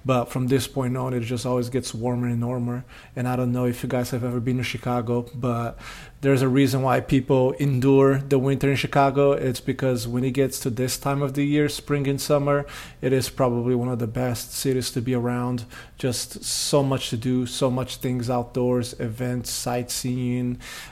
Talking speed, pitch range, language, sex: 205 wpm, 125-140 Hz, English, male